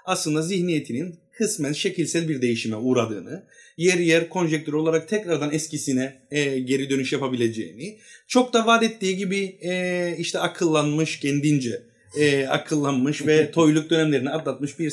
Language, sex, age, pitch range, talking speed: Turkish, male, 30-49, 135-200 Hz, 130 wpm